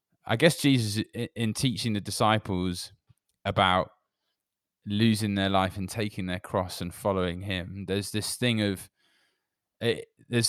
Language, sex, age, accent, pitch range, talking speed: English, male, 20-39, British, 90-110 Hz, 135 wpm